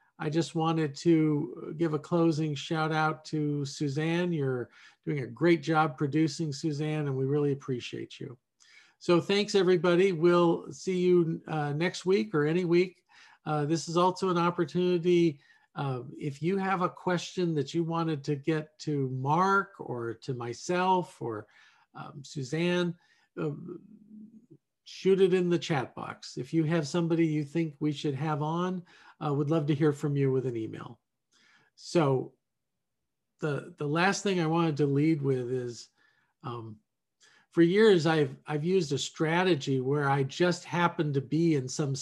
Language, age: English, 50-69